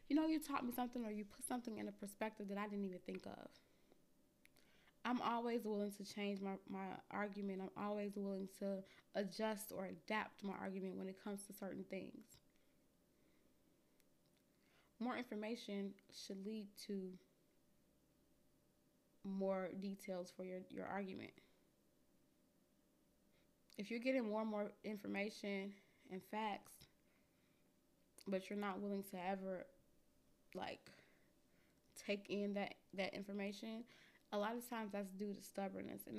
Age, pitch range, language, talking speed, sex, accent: 20-39, 195-230 Hz, English, 140 wpm, female, American